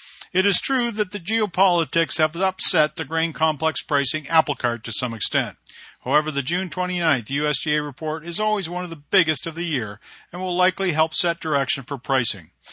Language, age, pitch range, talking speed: English, 50-69, 135-175 Hz, 195 wpm